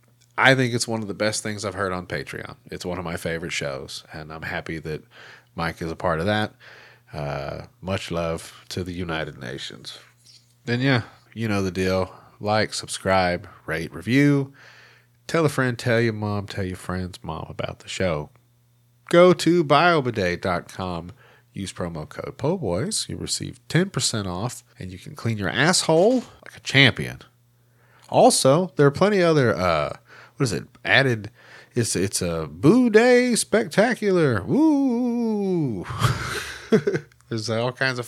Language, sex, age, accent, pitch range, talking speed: English, male, 30-49, American, 95-145 Hz, 160 wpm